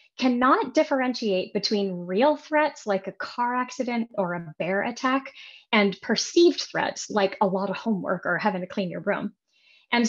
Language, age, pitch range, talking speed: English, 20-39, 190-260 Hz, 165 wpm